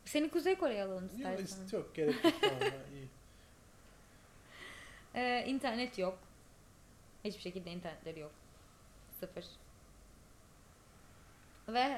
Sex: female